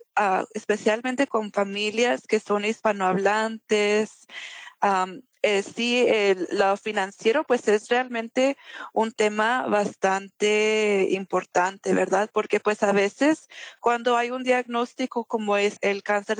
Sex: female